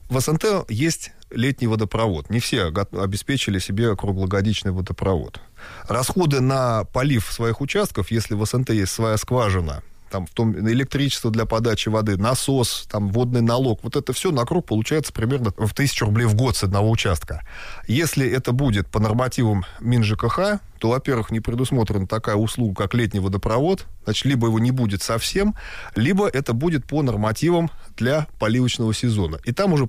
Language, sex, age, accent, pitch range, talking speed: Russian, male, 20-39, native, 105-130 Hz, 160 wpm